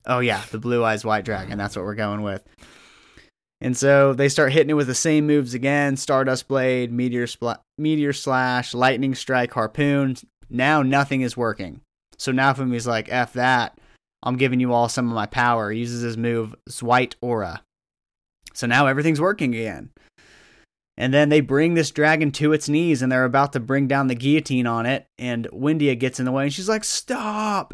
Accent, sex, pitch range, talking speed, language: American, male, 120-140 Hz, 190 wpm, English